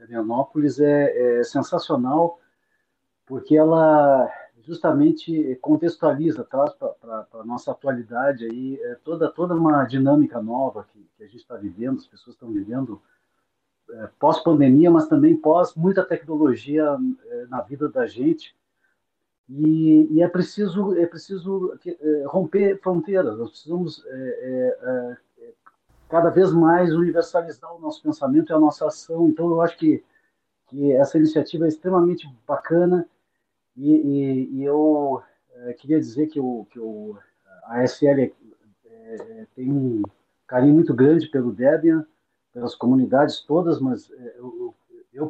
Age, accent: 50-69, Brazilian